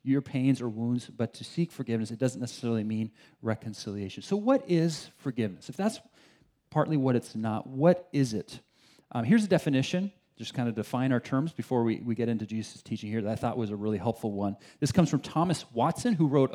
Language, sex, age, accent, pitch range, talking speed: English, male, 40-59, American, 120-160 Hz, 215 wpm